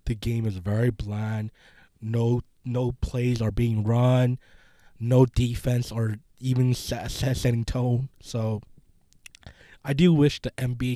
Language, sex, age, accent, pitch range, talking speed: English, male, 20-39, American, 120-140 Hz, 125 wpm